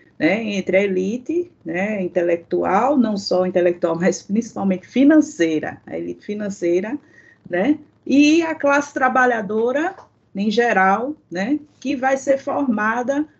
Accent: Brazilian